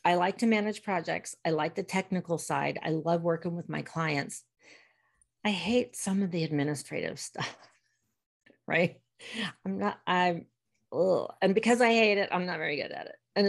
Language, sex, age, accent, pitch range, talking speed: English, female, 40-59, American, 155-205 Hz, 175 wpm